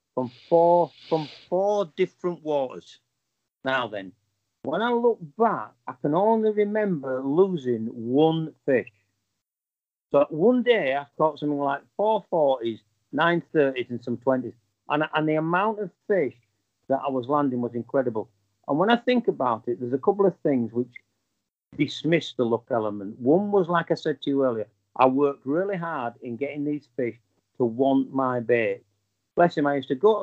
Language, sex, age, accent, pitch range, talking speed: English, male, 50-69, British, 115-155 Hz, 170 wpm